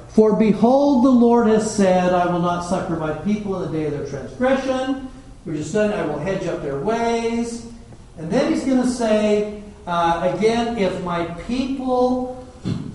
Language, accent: English, American